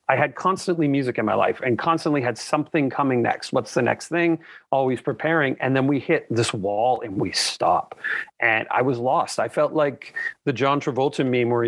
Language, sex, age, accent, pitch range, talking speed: English, male, 40-59, American, 125-170 Hz, 205 wpm